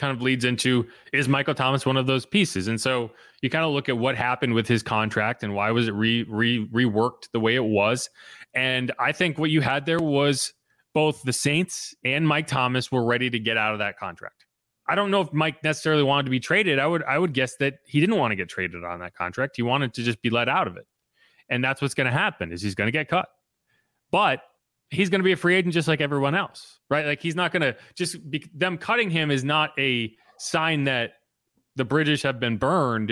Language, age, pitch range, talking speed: English, 30-49, 120-155 Hz, 245 wpm